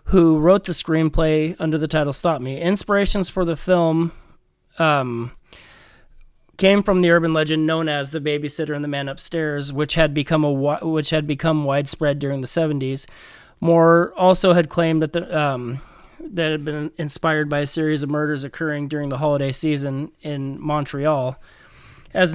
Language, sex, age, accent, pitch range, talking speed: English, male, 30-49, American, 150-175 Hz, 165 wpm